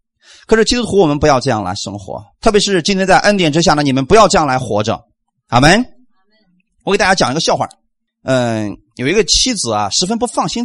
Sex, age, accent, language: male, 30-49, native, Chinese